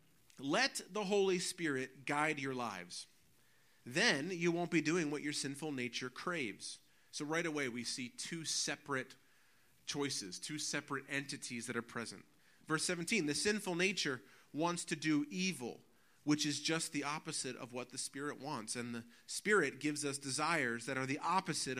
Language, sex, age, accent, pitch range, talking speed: English, male, 30-49, American, 140-200 Hz, 165 wpm